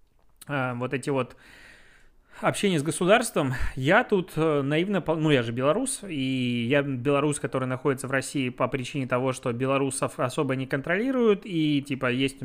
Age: 20-39